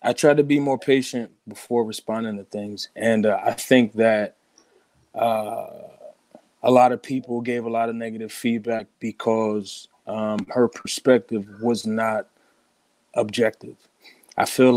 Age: 20-39